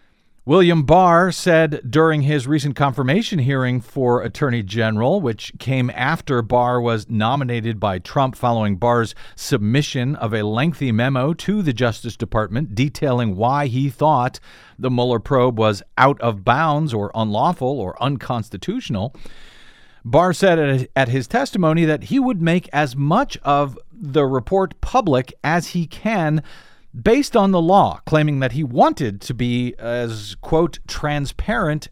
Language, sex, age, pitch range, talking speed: English, male, 50-69, 120-155 Hz, 145 wpm